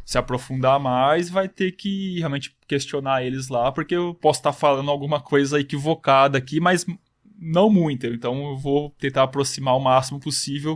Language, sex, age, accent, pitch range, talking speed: Portuguese, male, 20-39, Brazilian, 125-160 Hz, 165 wpm